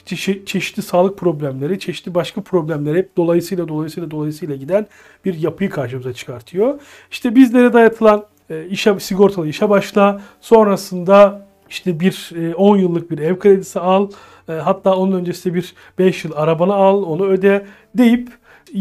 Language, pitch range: Turkish, 170-205 Hz